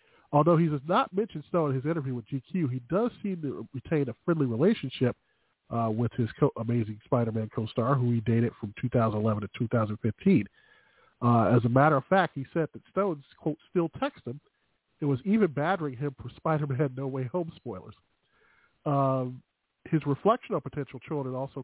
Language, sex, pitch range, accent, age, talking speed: English, male, 120-160 Hz, American, 40-59, 185 wpm